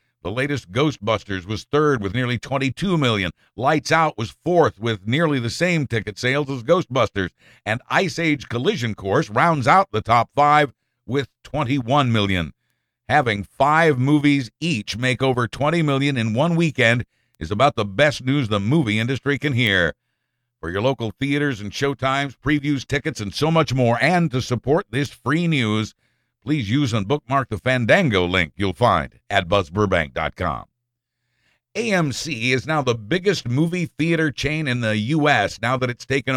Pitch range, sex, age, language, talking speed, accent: 115-150 Hz, male, 60-79, English, 165 wpm, American